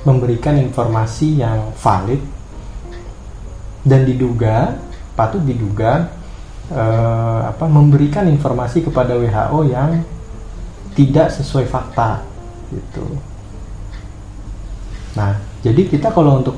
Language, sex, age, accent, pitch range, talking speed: Indonesian, male, 30-49, native, 105-140 Hz, 85 wpm